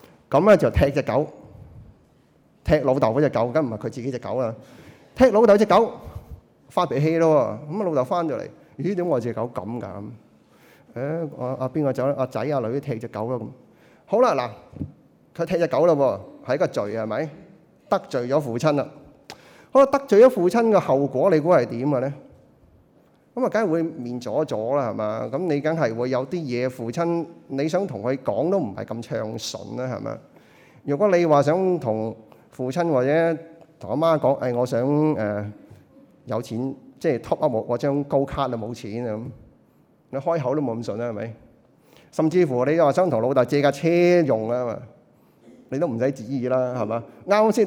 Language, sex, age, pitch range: Chinese, male, 30-49, 120-165 Hz